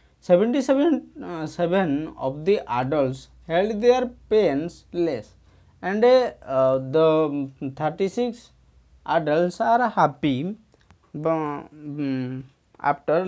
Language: English